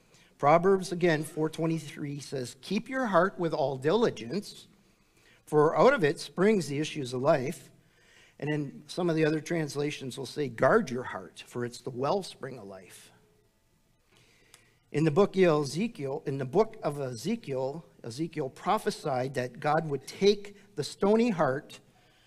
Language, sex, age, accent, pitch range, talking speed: English, male, 50-69, American, 125-170 Hz, 150 wpm